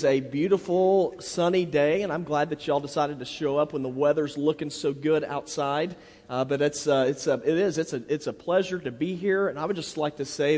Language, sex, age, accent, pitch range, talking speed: English, male, 40-59, American, 150-185 Hz, 245 wpm